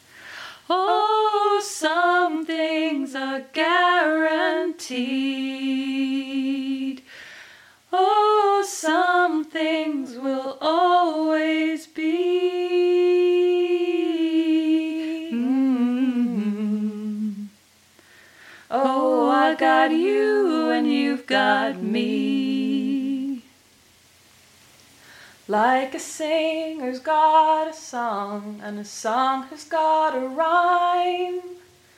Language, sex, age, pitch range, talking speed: English, female, 20-39, 255-330 Hz, 65 wpm